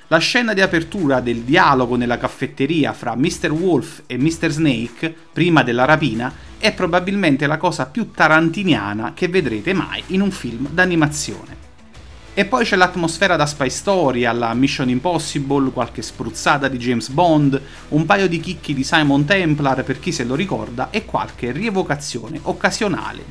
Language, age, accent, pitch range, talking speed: Italian, 30-49, native, 125-175 Hz, 155 wpm